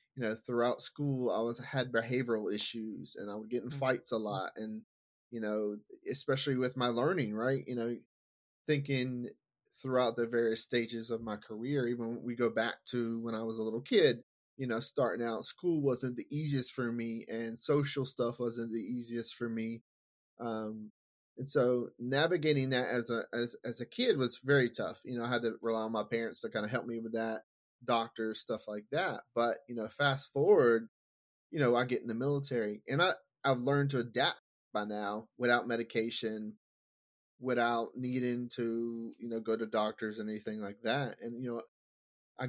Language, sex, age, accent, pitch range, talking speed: English, male, 30-49, American, 115-130 Hz, 190 wpm